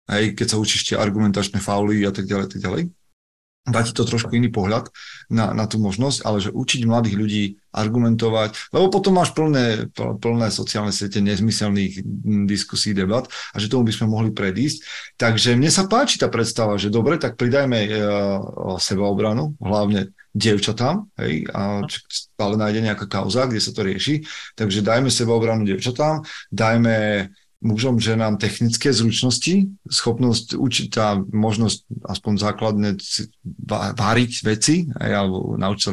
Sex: male